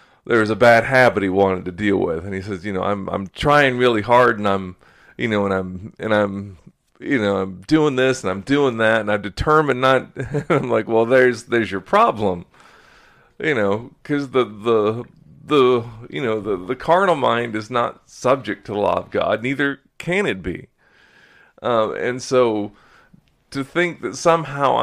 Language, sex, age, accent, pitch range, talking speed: English, male, 40-59, American, 100-135 Hz, 190 wpm